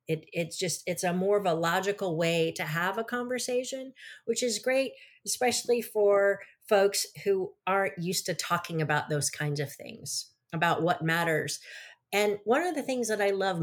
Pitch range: 165-220 Hz